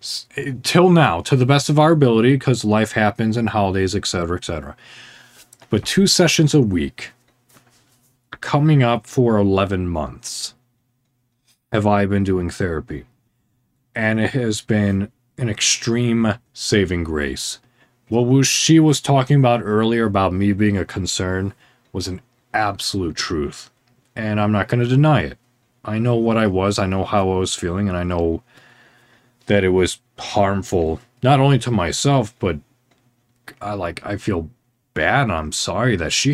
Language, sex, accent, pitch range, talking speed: English, male, American, 95-125 Hz, 150 wpm